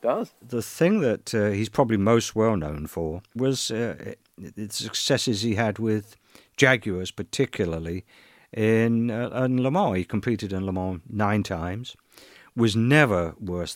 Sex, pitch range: male, 95-120 Hz